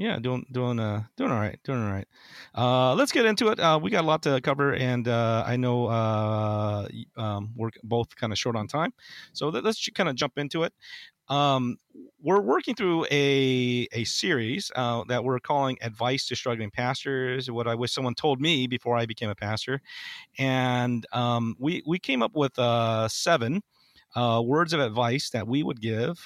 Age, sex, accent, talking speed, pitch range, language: 40-59, male, American, 195 wpm, 110-140 Hz, English